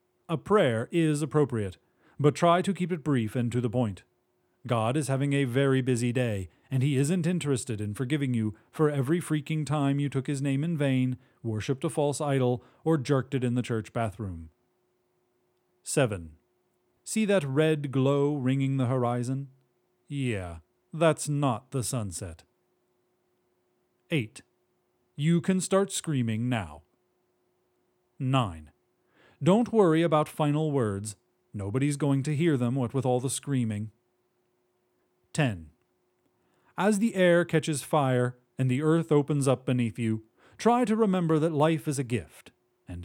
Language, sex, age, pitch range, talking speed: English, male, 40-59, 120-155 Hz, 150 wpm